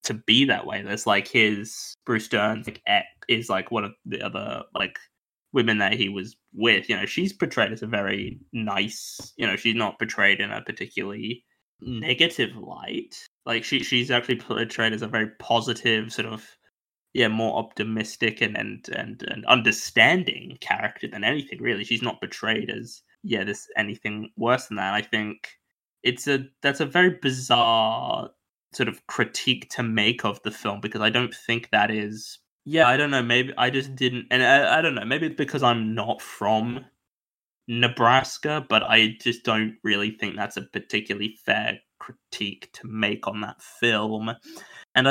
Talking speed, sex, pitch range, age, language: 180 wpm, male, 110-130 Hz, 10-29, English